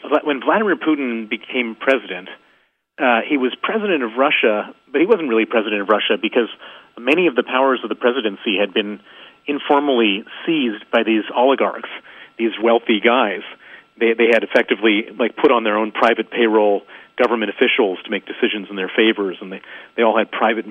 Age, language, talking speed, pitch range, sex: 40-59, English, 175 wpm, 110-130 Hz, male